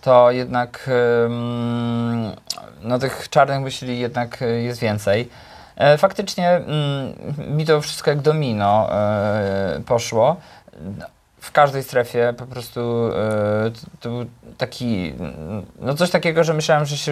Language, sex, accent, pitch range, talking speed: Polish, male, native, 110-140 Hz, 110 wpm